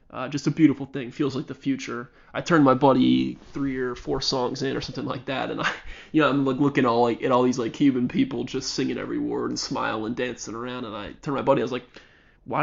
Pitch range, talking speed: 120-140 Hz, 270 wpm